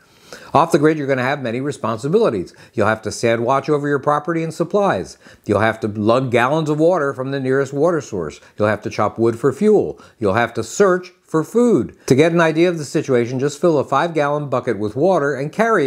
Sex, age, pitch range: male, 60-79, 115-160 Hz